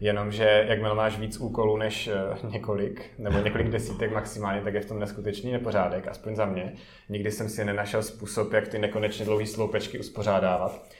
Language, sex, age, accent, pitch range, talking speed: Czech, male, 30-49, native, 105-125 Hz, 170 wpm